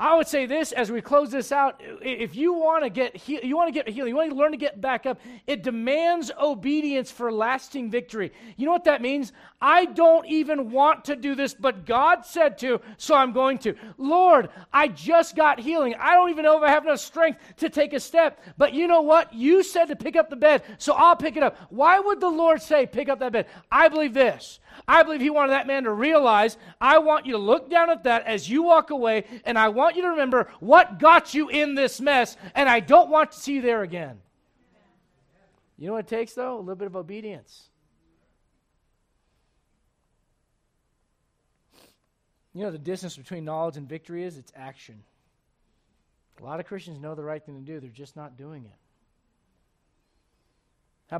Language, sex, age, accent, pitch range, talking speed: English, male, 40-59, American, 205-305 Hz, 210 wpm